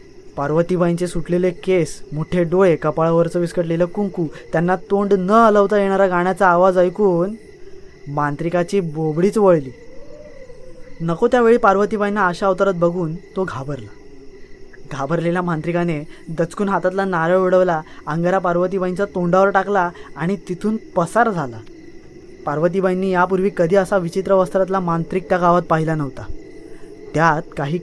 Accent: native